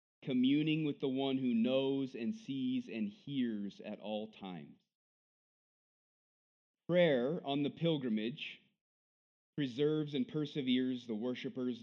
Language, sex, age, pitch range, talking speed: English, male, 30-49, 95-130 Hz, 110 wpm